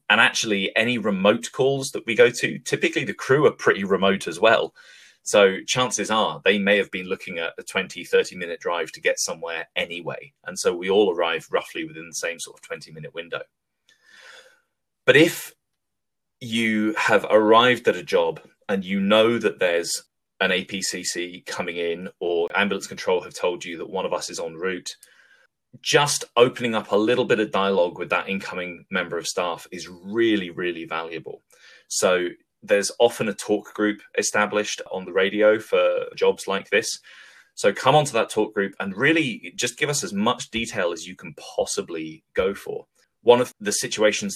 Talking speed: 185 wpm